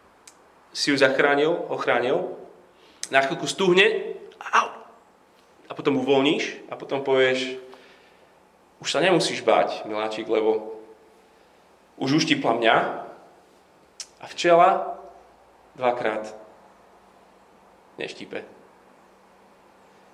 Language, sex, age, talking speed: Slovak, male, 30-49, 75 wpm